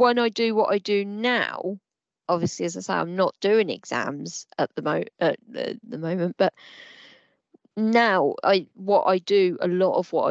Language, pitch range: English, 170-225 Hz